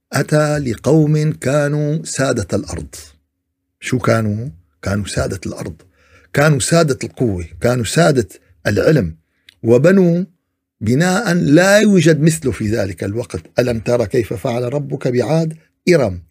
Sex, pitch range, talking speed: male, 90-130 Hz, 115 wpm